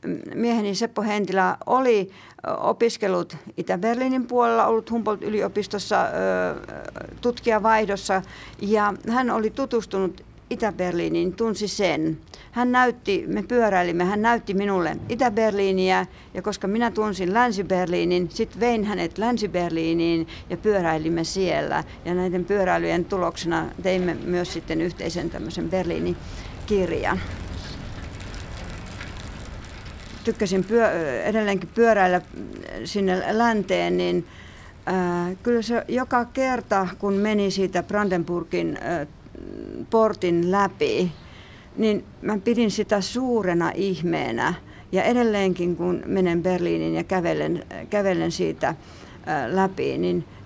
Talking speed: 95 wpm